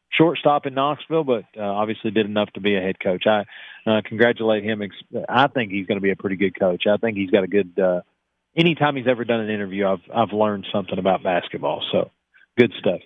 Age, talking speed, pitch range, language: 40-59, 225 wpm, 115-145 Hz, English